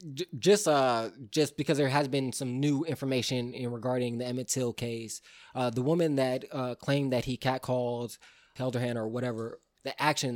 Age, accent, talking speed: 20-39, American, 190 wpm